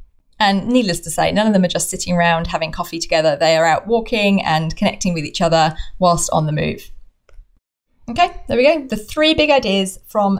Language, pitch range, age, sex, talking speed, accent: English, 170-230 Hz, 20-39, female, 210 wpm, British